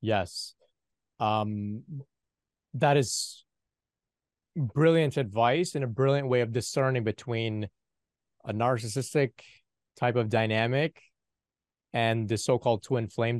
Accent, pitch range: American, 105-130 Hz